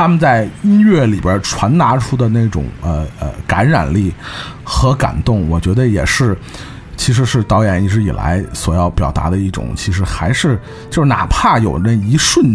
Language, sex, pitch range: Chinese, male, 90-135 Hz